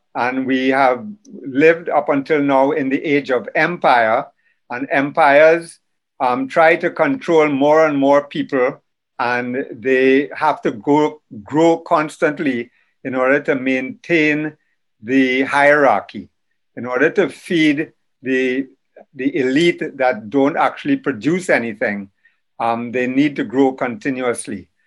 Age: 60-79